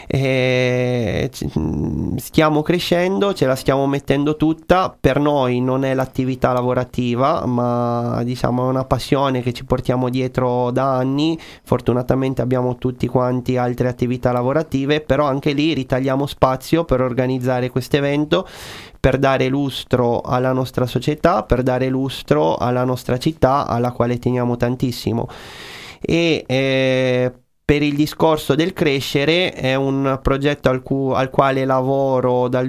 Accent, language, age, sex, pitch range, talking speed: native, Italian, 30-49, male, 125-145 Hz, 135 wpm